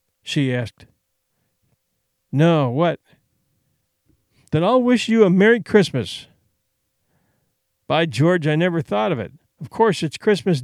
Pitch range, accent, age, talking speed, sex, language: 135-190 Hz, American, 50-69, 125 wpm, male, English